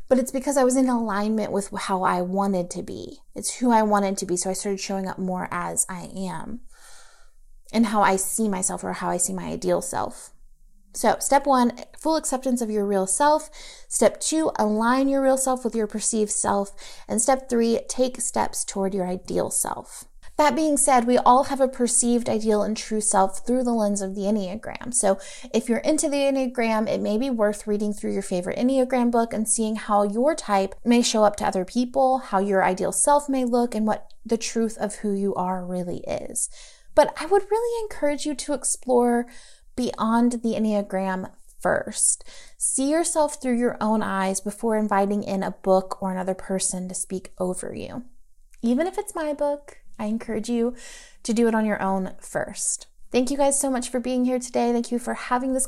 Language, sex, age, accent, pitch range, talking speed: English, female, 30-49, American, 200-260 Hz, 205 wpm